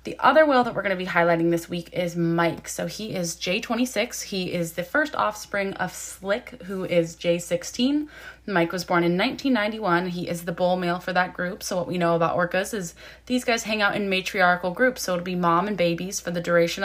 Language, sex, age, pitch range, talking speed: English, female, 20-39, 170-210 Hz, 225 wpm